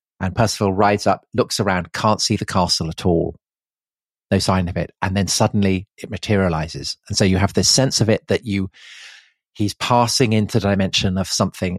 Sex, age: male, 40-59